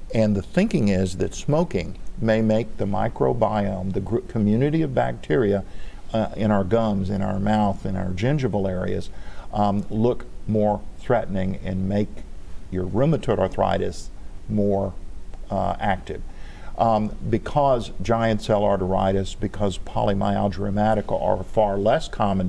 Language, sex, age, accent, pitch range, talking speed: English, male, 50-69, American, 95-110 Hz, 135 wpm